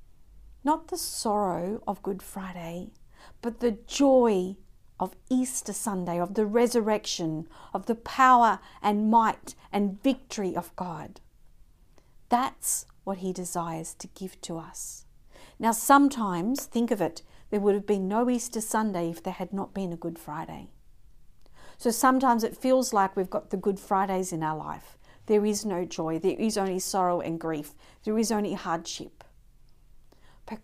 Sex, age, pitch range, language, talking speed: female, 50-69, 175-230 Hz, English, 155 wpm